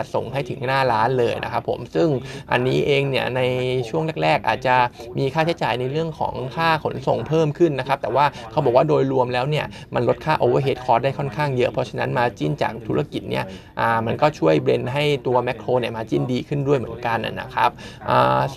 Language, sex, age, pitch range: Thai, male, 20-39, 120-145 Hz